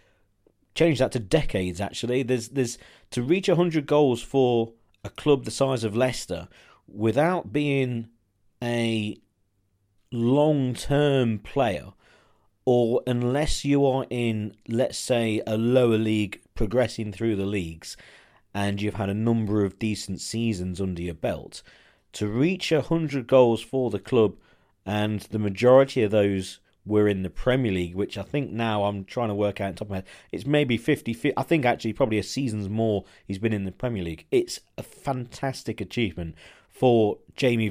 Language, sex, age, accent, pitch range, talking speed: English, male, 40-59, British, 100-130 Hz, 165 wpm